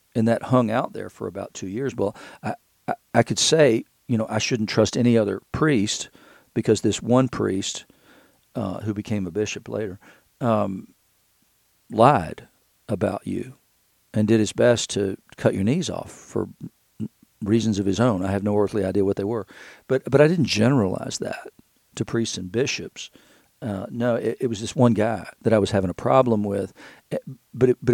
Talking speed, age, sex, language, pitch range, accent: 185 wpm, 50-69, male, English, 105-125 Hz, American